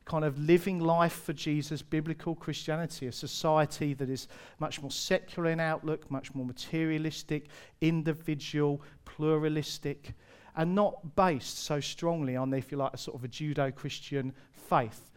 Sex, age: male, 40-59